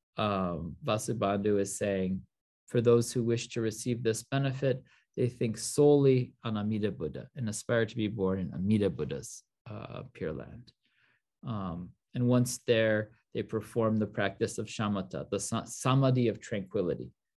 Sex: male